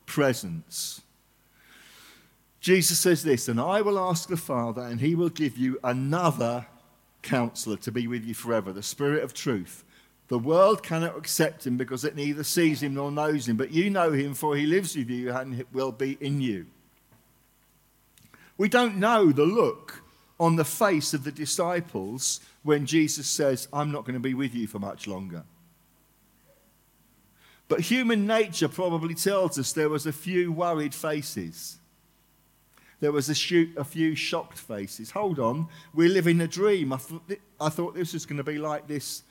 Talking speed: 170 wpm